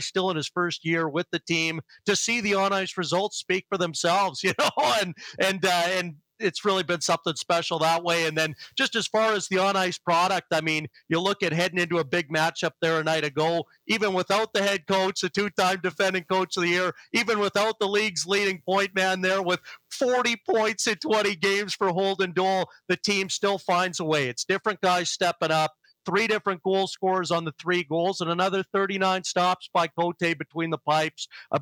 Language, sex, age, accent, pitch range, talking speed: English, male, 40-59, American, 160-190 Hz, 215 wpm